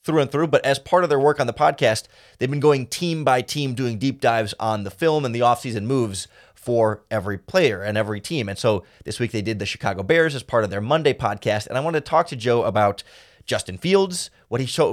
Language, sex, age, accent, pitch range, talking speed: English, male, 30-49, American, 115-150 Hz, 250 wpm